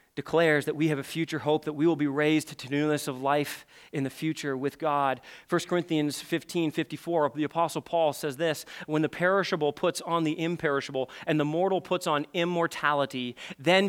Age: 30-49